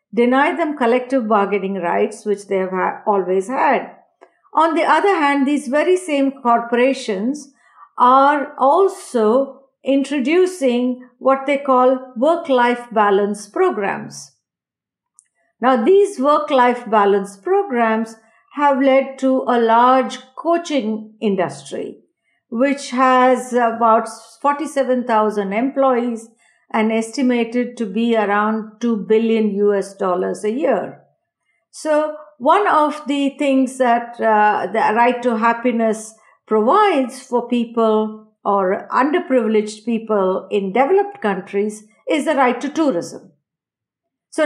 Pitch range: 220-280 Hz